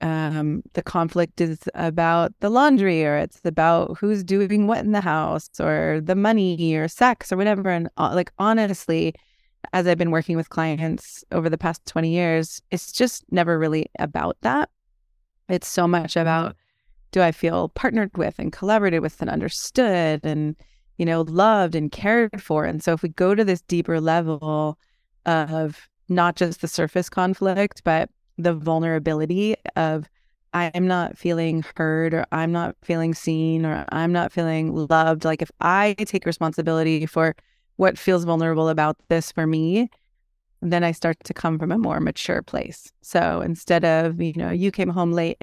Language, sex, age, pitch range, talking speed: English, female, 30-49, 160-180 Hz, 170 wpm